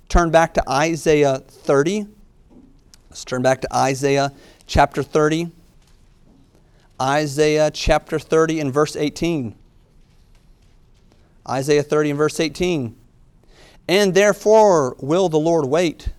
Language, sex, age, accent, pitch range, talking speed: English, male, 40-59, American, 125-155 Hz, 110 wpm